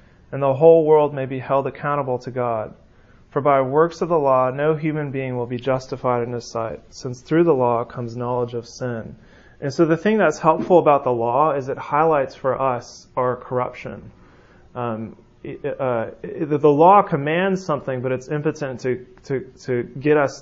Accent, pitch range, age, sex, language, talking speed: American, 125-150 Hz, 30-49, male, English, 185 wpm